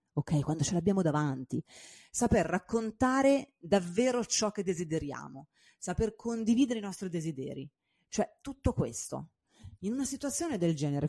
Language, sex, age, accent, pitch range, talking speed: Italian, female, 30-49, native, 155-230 Hz, 125 wpm